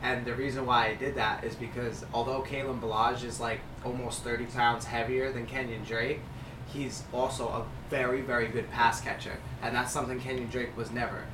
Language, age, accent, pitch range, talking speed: English, 20-39, American, 120-135 Hz, 190 wpm